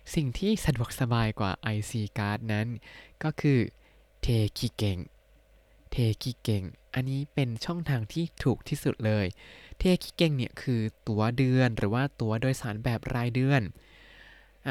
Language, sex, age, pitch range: Thai, male, 20-39, 110-145 Hz